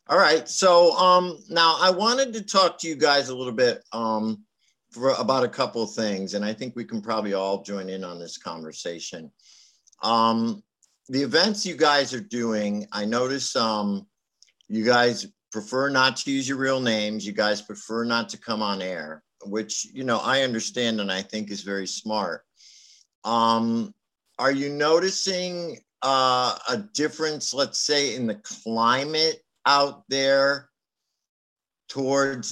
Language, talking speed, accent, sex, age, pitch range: English, 160 wpm, American, male, 50-69, 100-135 Hz